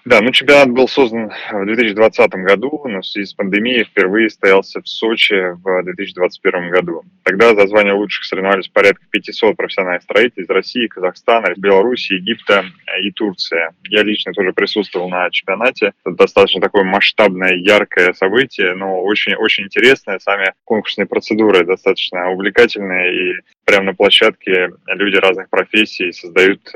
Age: 20-39